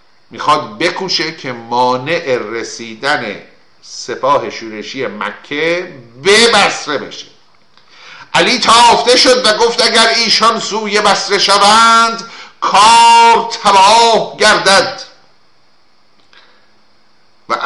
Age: 50-69